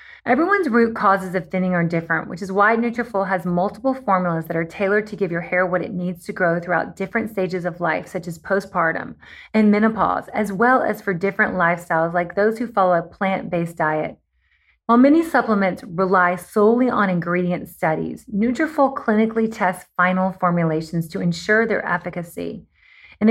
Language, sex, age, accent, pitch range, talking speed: English, female, 30-49, American, 180-230 Hz, 170 wpm